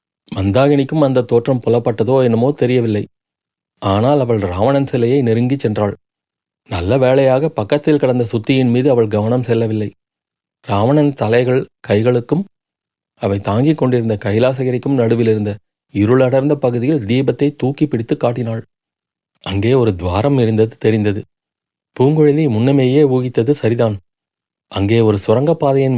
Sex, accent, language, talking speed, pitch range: male, native, Tamil, 110 wpm, 110-140 Hz